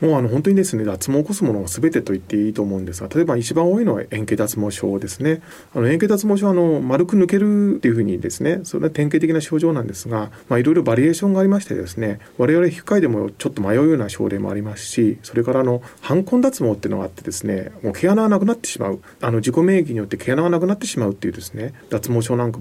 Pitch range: 110-165 Hz